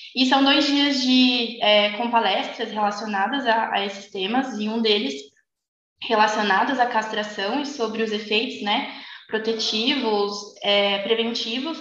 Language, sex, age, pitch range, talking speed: Portuguese, female, 20-39, 215-260 Hz, 135 wpm